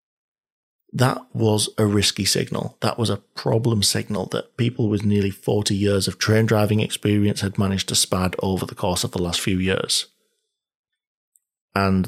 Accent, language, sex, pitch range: British, English, male, 95-125 Hz